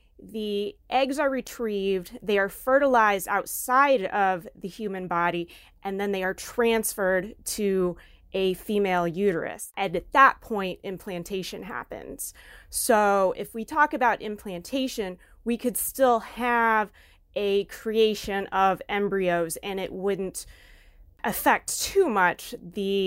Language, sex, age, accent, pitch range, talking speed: English, female, 20-39, American, 185-225 Hz, 125 wpm